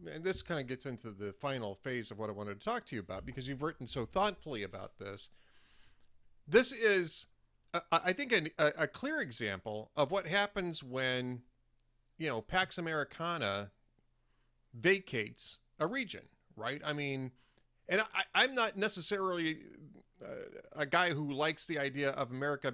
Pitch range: 120-170 Hz